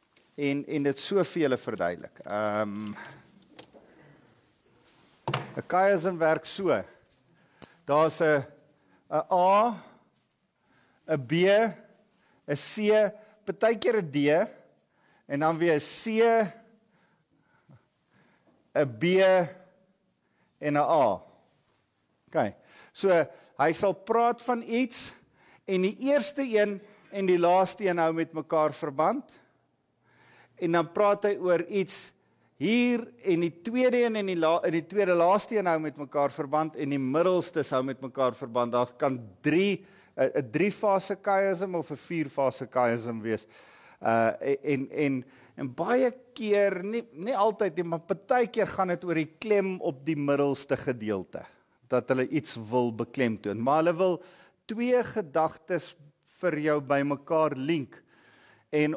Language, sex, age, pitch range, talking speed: English, male, 50-69, 145-200 Hz, 145 wpm